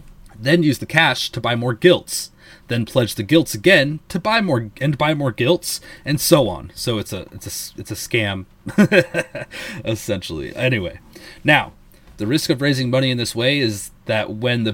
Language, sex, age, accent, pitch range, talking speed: English, male, 30-49, American, 105-130 Hz, 185 wpm